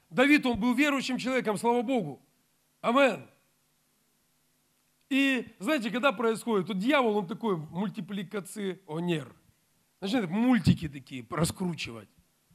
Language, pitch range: Russian, 170-225 Hz